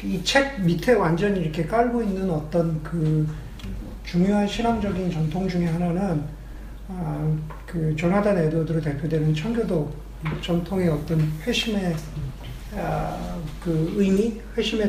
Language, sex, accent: Korean, male, native